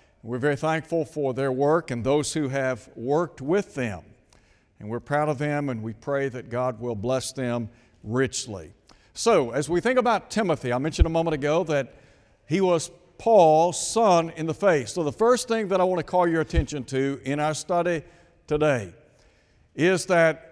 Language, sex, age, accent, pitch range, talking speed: English, male, 60-79, American, 120-180 Hz, 185 wpm